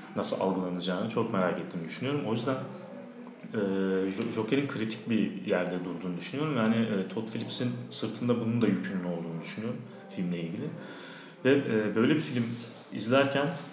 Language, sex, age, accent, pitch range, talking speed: Turkish, male, 40-59, native, 100-140 Hz, 145 wpm